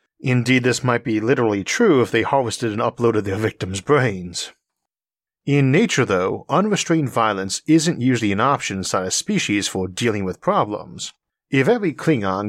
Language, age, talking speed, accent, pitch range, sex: English, 40-59, 160 wpm, American, 105-145 Hz, male